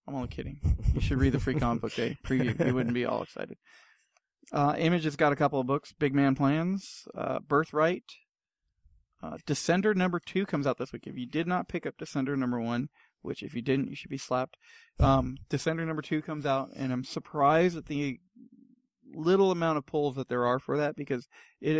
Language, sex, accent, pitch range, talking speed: English, male, American, 130-155 Hz, 210 wpm